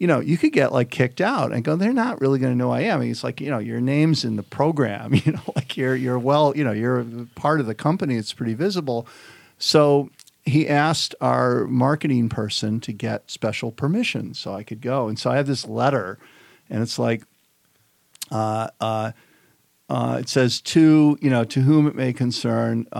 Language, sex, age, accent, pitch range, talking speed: English, male, 50-69, American, 115-140 Hz, 210 wpm